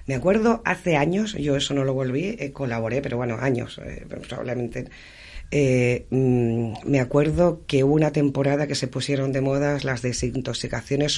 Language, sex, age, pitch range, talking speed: Spanish, female, 40-59, 120-160 Hz, 165 wpm